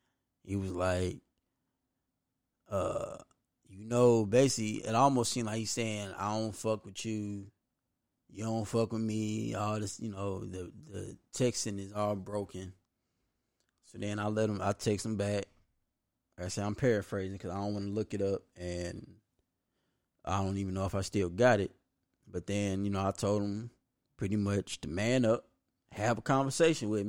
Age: 20-39